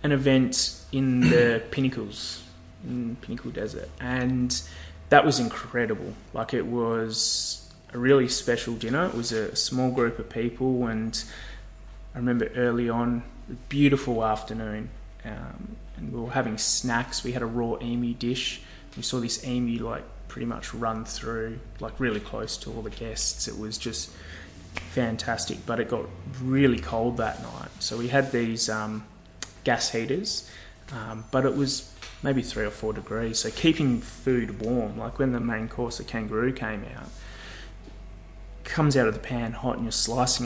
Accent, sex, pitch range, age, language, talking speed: Australian, male, 110-125 Hz, 20-39, English, 165 wpm